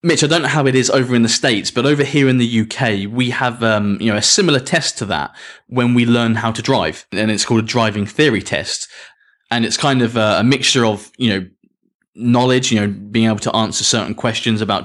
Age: 20-39